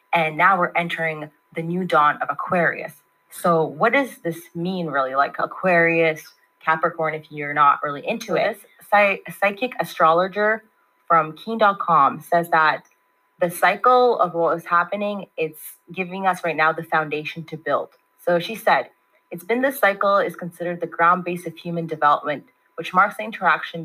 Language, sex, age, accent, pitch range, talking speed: English, female, 20-39, American, 160-185 Hz, 165 wpm